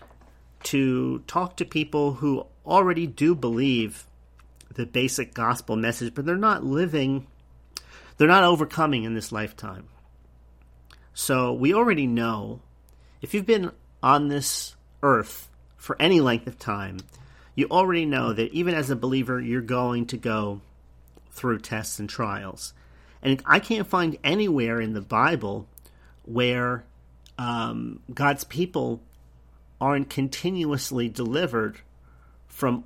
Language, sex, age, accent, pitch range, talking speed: English, male, 40-59, American, 95-145 Hz, 125 wpm